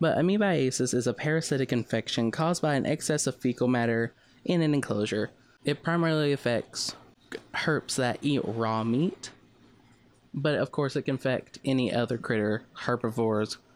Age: 20-39